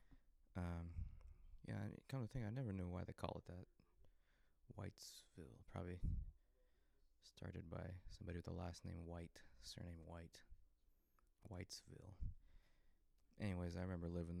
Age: 20-39